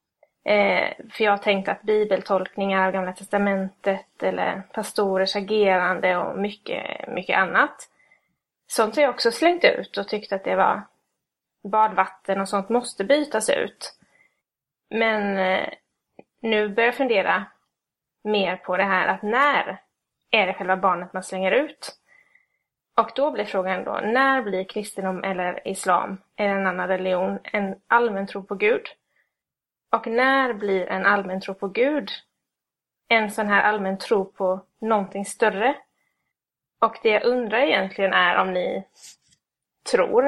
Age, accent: 20-39, native